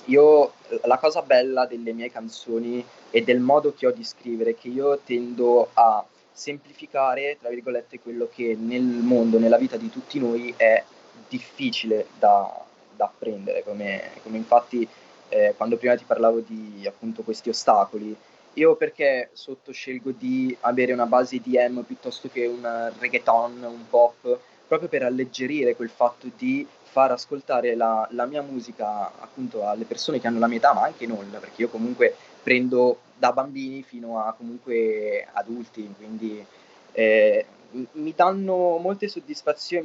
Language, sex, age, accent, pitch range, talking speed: Italian, male, 20-39, native, 120-160 Hz, 155 wpm